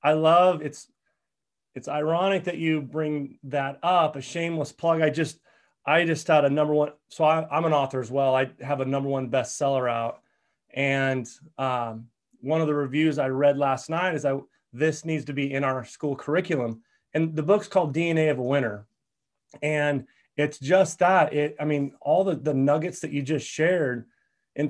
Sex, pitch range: male, 140-175 Hz